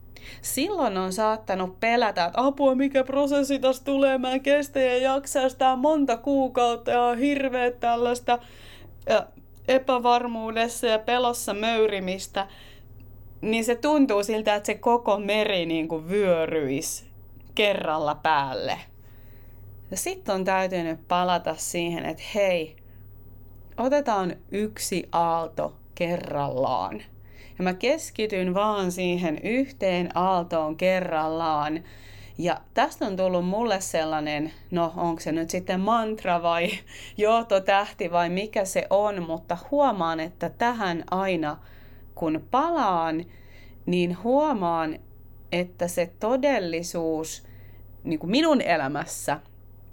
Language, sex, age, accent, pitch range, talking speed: Finnish, female, 30-49, native, 155-230 Hz, 105 wpm